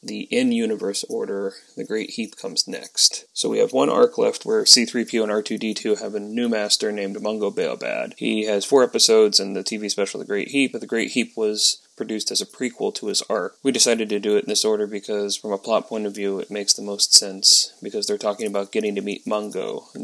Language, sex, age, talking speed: English, male, 20-39, 230 wpm